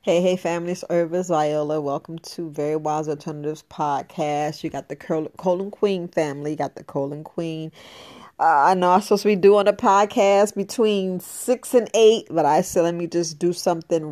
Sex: female